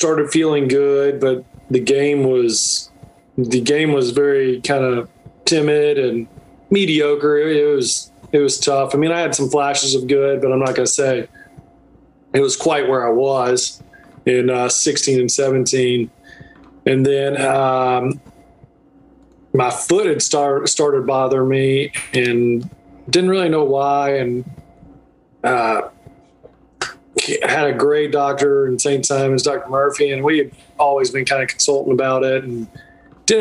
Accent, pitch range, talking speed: American, 130-150 Hz, 150 wpm